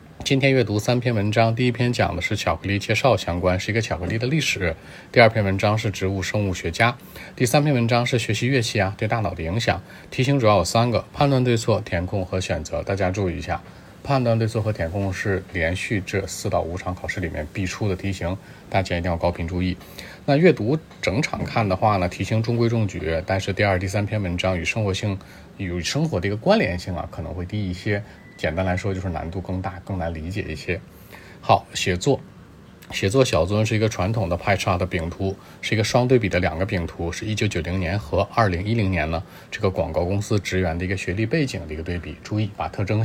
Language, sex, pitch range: Chinese, male, 90-110 Hz